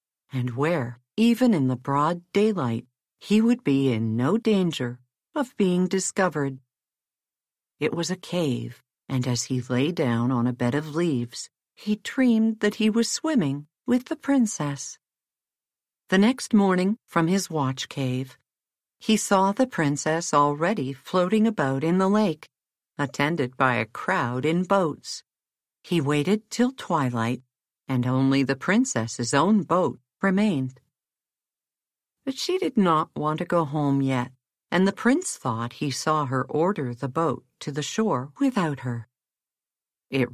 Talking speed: 145 wpm